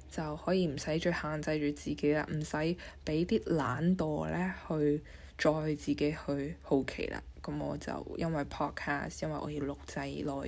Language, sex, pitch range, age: Chinese, female, 130-175 Hz, 10-29